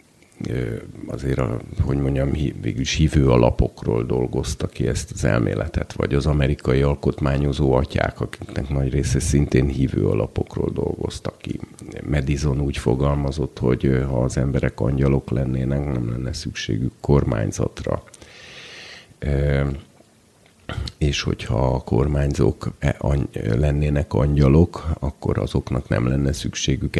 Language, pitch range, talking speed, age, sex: Hungarian, 65-80 Hz, 105 wpm, 50-69, male